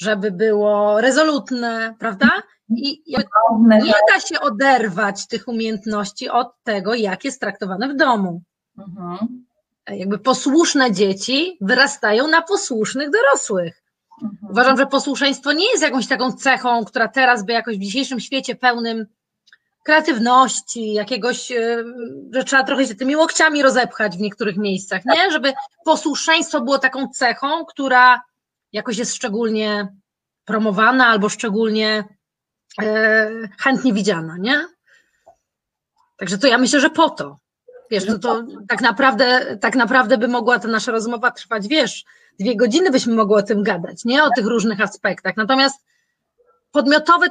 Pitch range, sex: 215-275 Hz, female